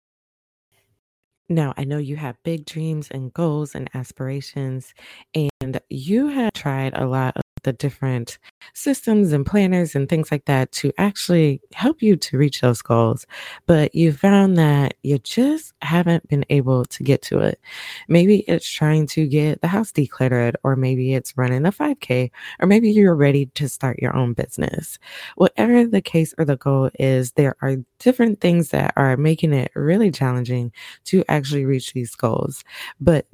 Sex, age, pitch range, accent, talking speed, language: female, 20-39, 130-170 Hz, American, 170 wpm, English